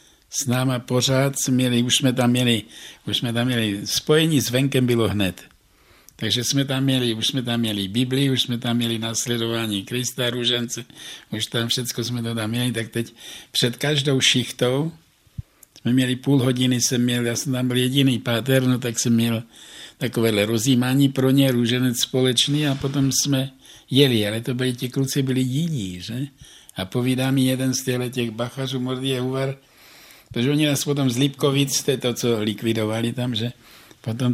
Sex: male